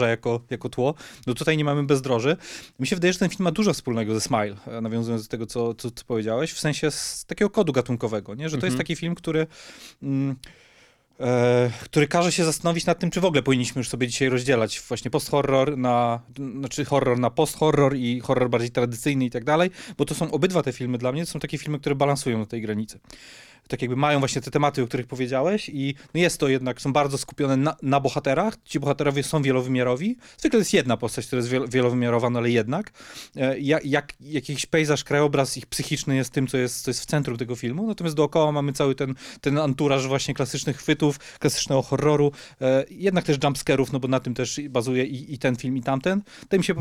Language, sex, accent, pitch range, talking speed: Polish, male, native, 125-150 Hz, 220 wpm